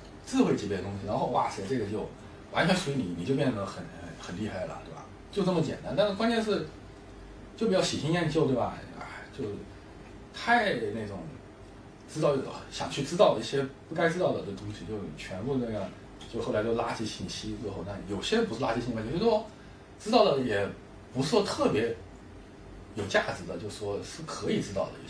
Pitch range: 100-160 Hz